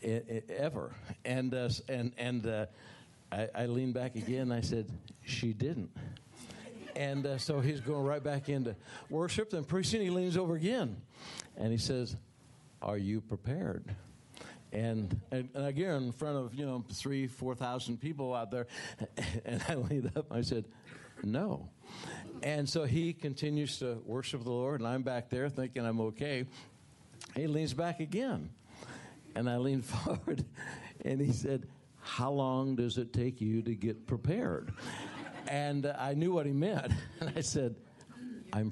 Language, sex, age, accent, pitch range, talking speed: English, male, 60-79, American, 120-150 Hz, 165 wpm